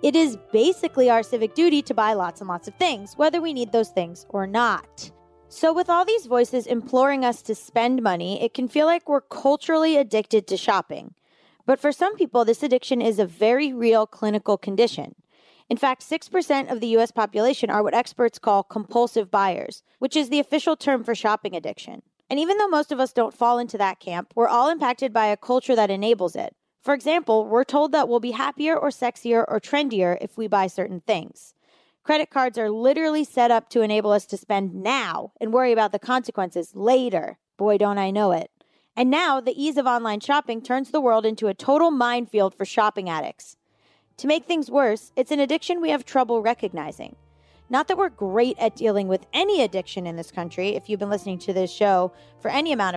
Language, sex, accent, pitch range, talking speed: English, female, American, 205-280 Hz, 205 wpm